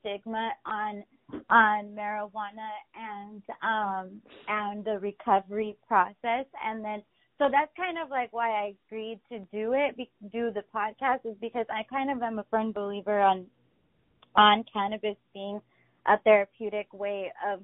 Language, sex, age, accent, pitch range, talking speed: English, female, 20-39, American, 200-230 Hz, 145 wpm